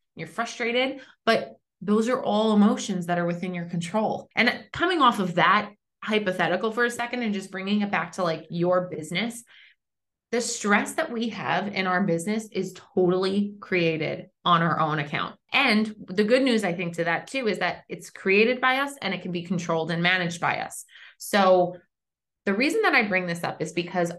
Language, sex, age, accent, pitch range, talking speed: English, female, 20-39, American, 175-220 Hz, 195 wpm